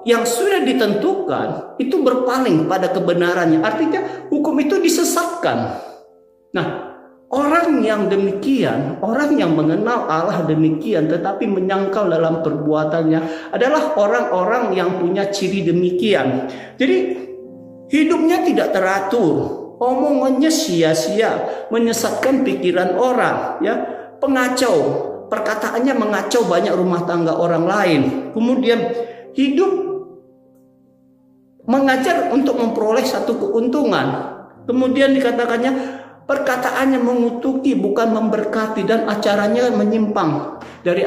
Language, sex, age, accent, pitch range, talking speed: Indonesian, male, 50-69, native, 175-260 Hz, 95 wpm